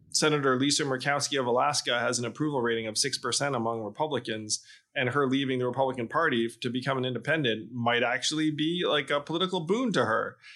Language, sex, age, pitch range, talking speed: English, male, 20-39, 125-155 Hz, 180 wpm